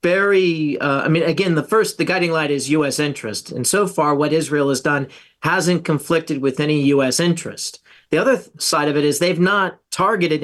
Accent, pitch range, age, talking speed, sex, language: American, 145-170 Hz, 40-59, 200 wpm, male, English